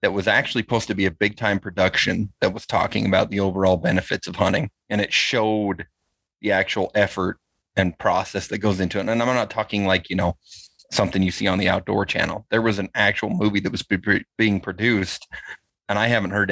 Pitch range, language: 95-110 Hz, English